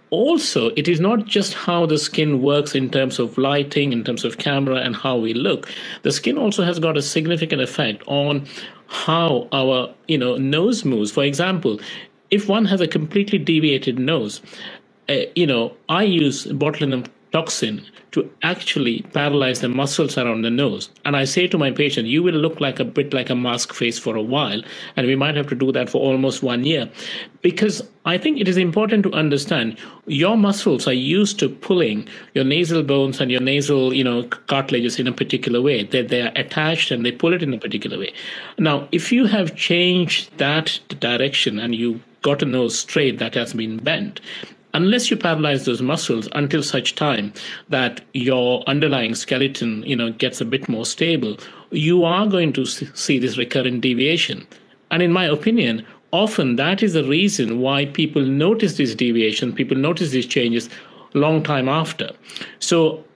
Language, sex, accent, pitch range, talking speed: English, male, Indian, 130-175 Hz, 185 wpm